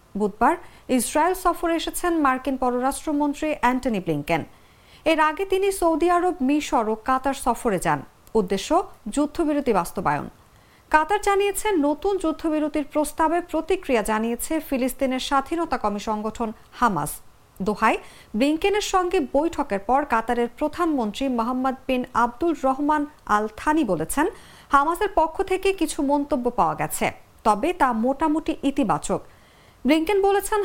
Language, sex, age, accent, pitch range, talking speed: English, female, 50-69, Indian, 235-330 Hz, 105 wpm